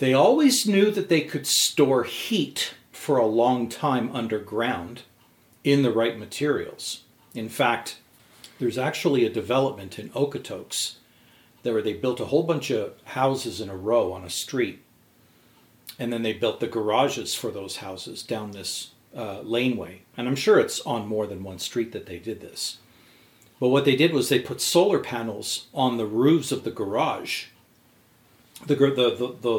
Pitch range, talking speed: 110-135 Hz, 170 wpm